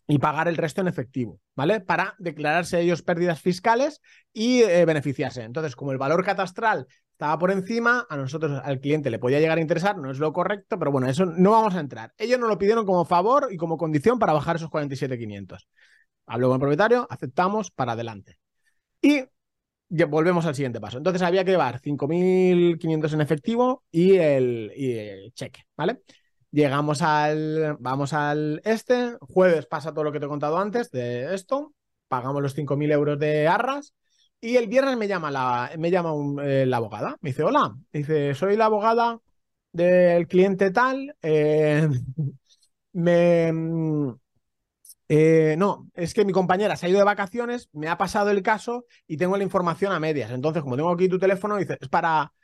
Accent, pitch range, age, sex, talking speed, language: Spanish, 145-195 Hz, 30-49, male, 180 wpm, Spanish